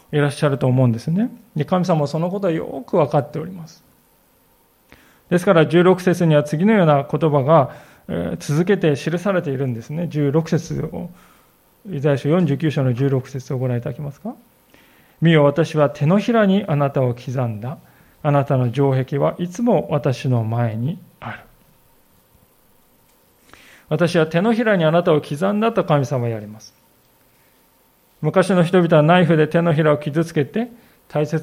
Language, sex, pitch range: Japanese, male, 140-185 Hz